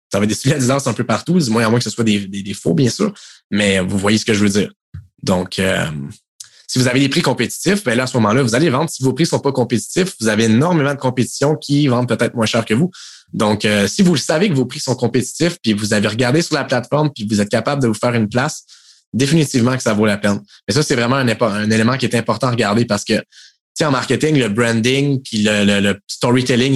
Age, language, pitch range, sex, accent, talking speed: 20-39, French, 110-135 Hz, male, Canadian, 265 wpm